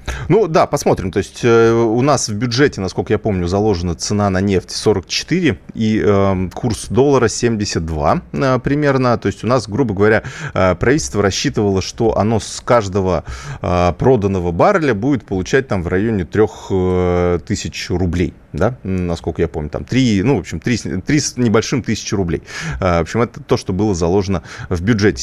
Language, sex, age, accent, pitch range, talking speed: Russian, male, 30-49, native, 90-115 Hz, 160 wpm